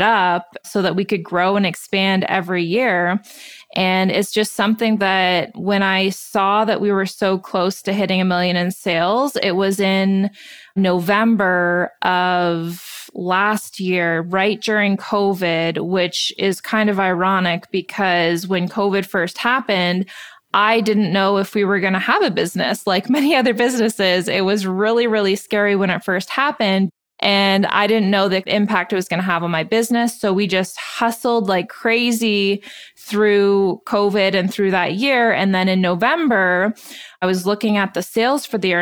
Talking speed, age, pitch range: 175 wpm, 20-39, 185-215 Hz